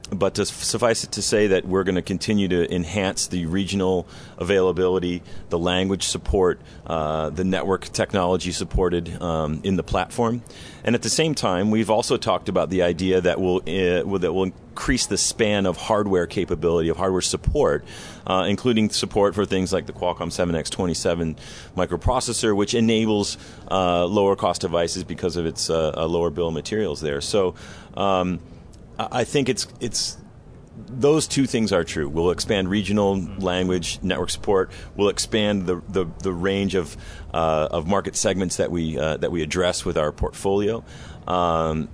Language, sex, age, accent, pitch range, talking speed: English, male, 40-59, American, 85-105 Hz, 170 wpm